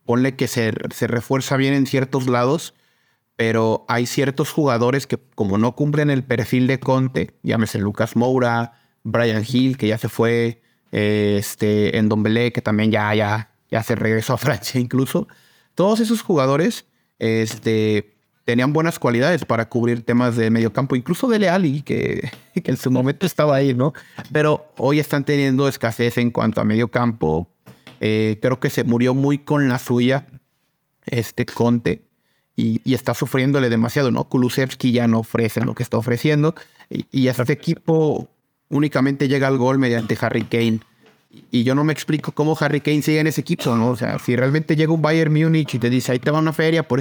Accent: Mexican